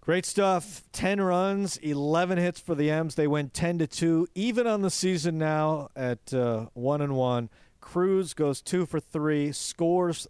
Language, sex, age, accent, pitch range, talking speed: English, male, 40-59, American, 125-160 Hz, 175 wpm